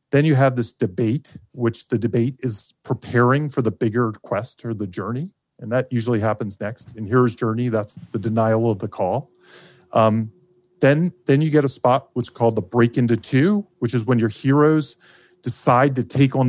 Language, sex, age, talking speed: English, male, 40-59, 195 wpm